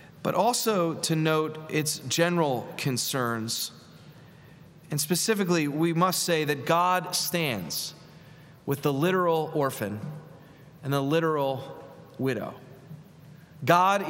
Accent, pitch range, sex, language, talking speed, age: American, 140-170 Hz, male, English, 100 wpm, 30-49